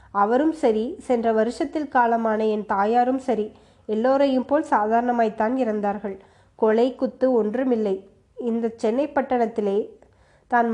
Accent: native